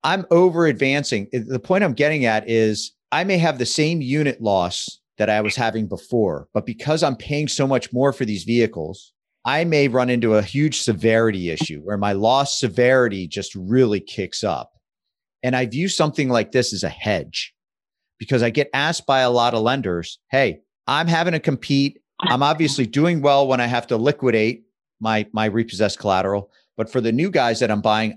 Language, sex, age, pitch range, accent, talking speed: English, male, 40-59, 105-140 Hz, American, 190 wpm